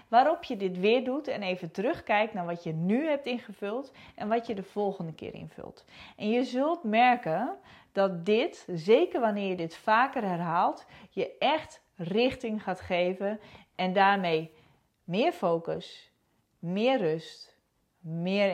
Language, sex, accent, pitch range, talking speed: Dutch, female, Dutch, 175-245 Hz, 145 wpm